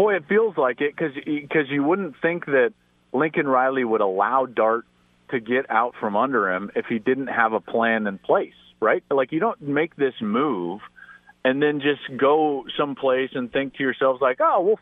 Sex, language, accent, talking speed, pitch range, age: male, English, American, 195 wpm, 110-170 Hz, 40-59